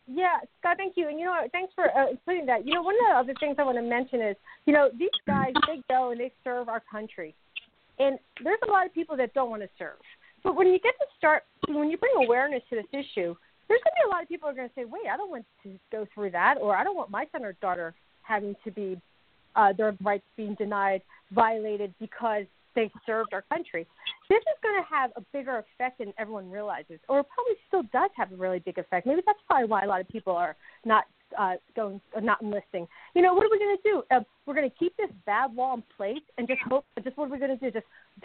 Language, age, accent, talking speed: English, 40-59, American, 260 wpm